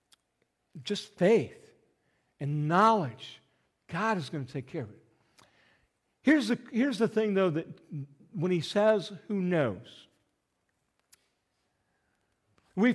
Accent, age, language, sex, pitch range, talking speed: American, 50-69, English, male, 135-190 Hz, 110 wpm